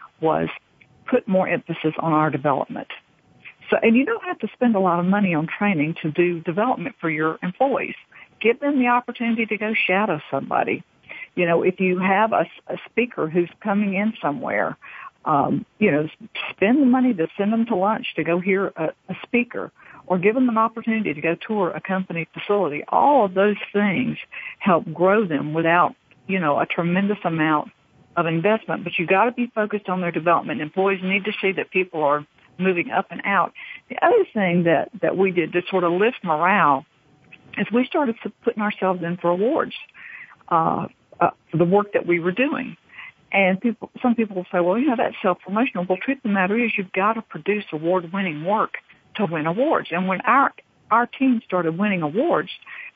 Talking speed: 195 wpm